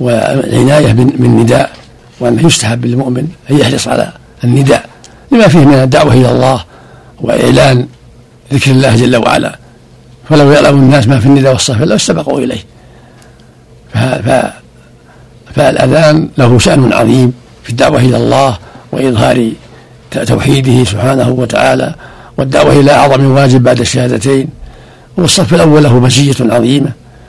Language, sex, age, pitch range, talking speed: Arabic, male, 60-79, 120-145 Hz, 120 wpm